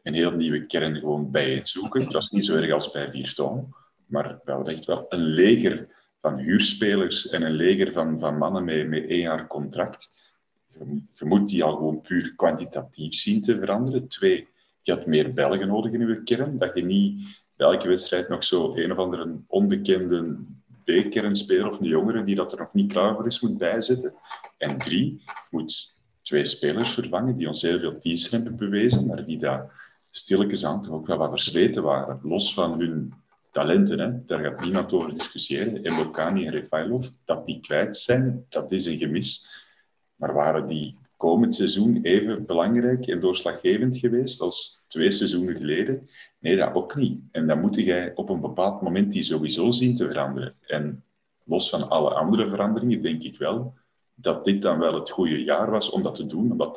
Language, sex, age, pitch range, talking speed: Dutch, male, 40-59, 80-125 Hz, 185 wpm